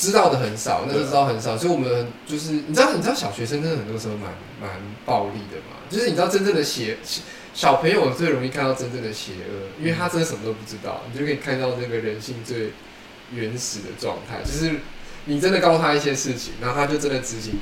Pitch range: 110-145 Hz